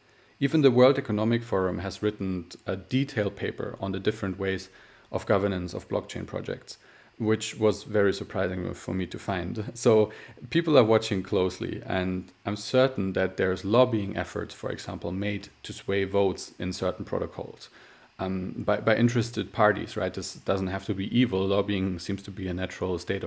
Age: 40-59